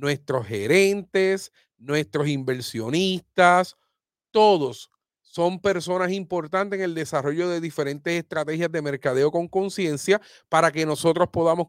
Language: Spanish